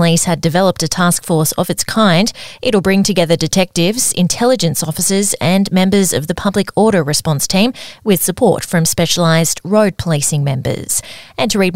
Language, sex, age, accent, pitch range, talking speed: English, female, 20-39, Australian, 165-210 Hz, 170 wpm